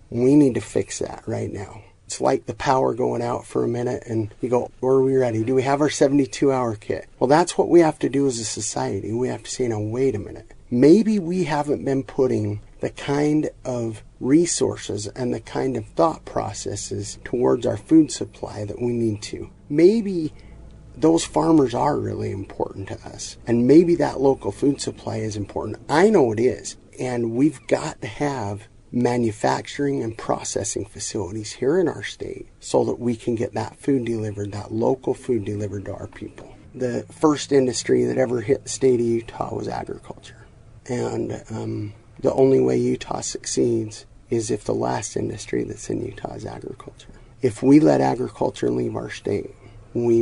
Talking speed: 185 wpm